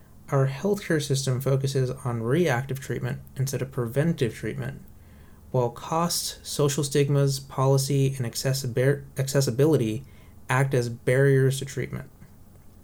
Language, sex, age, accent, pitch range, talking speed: English, male, 30-49, American, 120-140 Hz, 105 wpm